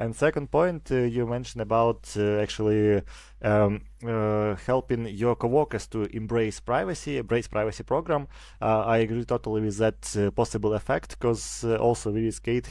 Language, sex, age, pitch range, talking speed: English, male, 20-39, 105-130 Hz, 160 wpm